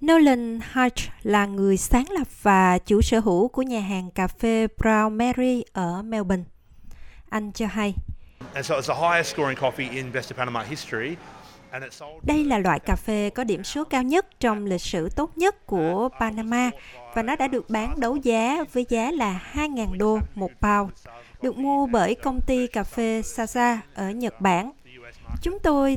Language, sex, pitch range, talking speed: Vietnamese, female, 190-250 Hz, 155 wpm